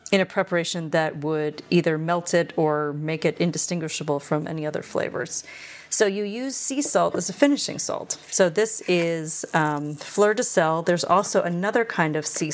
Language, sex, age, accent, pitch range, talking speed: English, female, 30-49, American, 160-200 Hz, 180 wpm